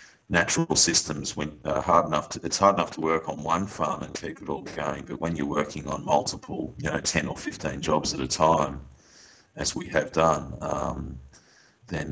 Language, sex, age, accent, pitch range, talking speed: English, male, 40-59, Australian, 75-85 Hz, 200 wpm